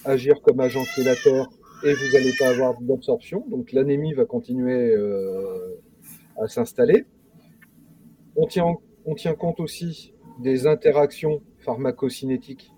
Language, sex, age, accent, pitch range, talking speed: French, male, 30-49, French, 140-220 Hz, 120 wpm